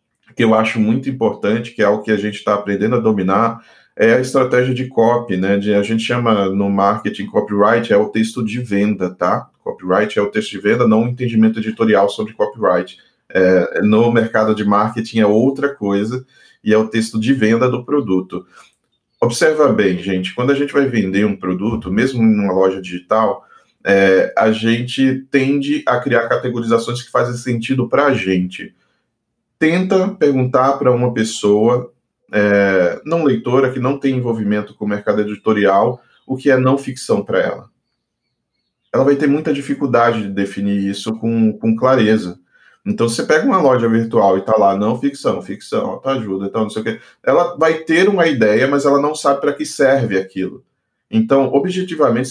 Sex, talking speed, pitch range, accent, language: male, 180 wpm, 105-135 Hz, Brazilian, Portuguese